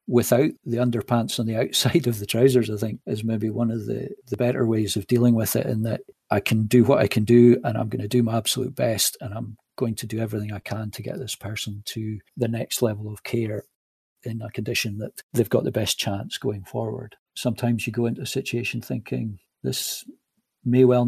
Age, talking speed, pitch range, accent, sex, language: 50-69, 225 wpm, 110-125 Hz, British, male, English